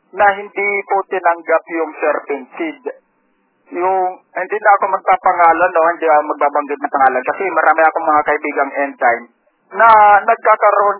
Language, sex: Filipino, male